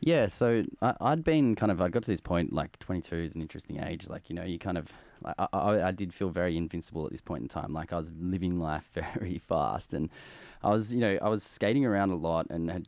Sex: male